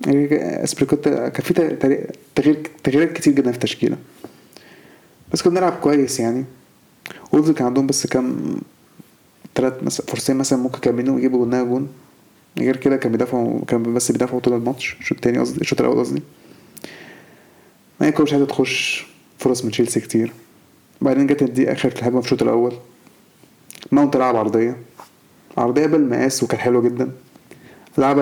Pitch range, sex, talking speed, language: 125-140 Hz, male, 140 wpm, Arabic